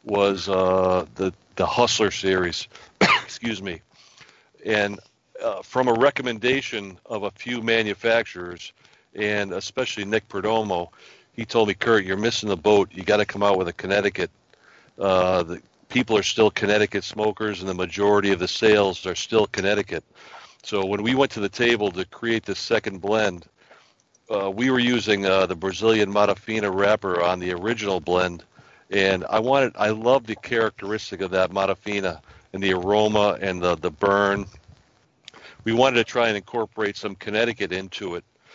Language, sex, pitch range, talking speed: English, male, 95-110 Hz, 165 wpm